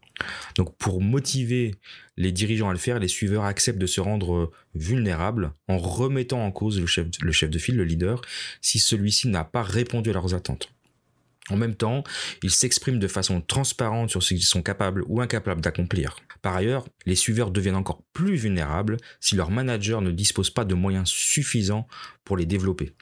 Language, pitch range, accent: French, 90-115 Hz, French